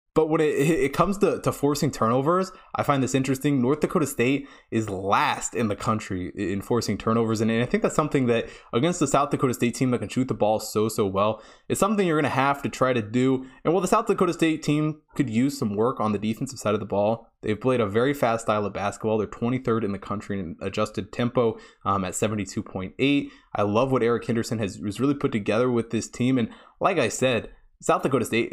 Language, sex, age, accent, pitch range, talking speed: English, male, 20-39, American, 105-135 Hz, 235 wpm